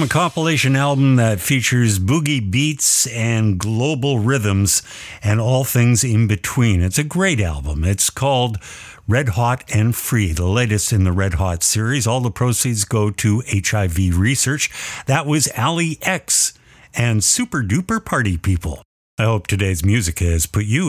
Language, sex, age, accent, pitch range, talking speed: English, male, 50-69, American, 95-130 Hz, 160 wpm